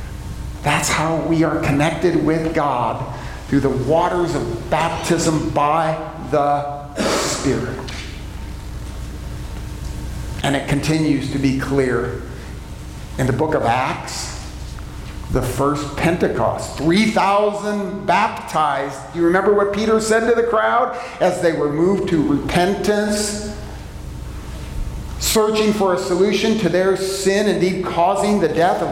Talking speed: 120 wpm